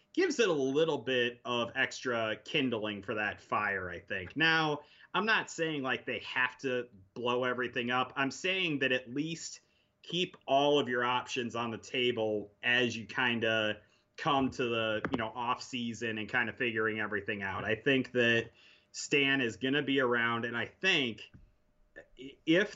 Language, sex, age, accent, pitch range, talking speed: English, male, 30-49, American, 115-140 Hz, 175 wpm